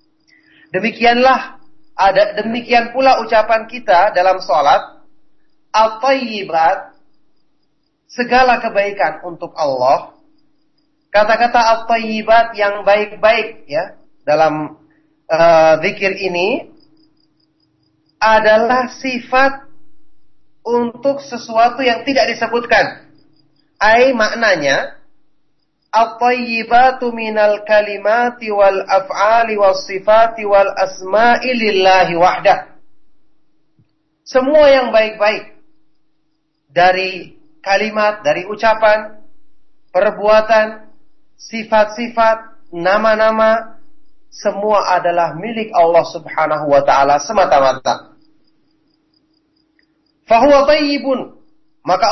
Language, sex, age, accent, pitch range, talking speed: English, male, 30-49, Indonesian, 190-265 Hz, 70 wpm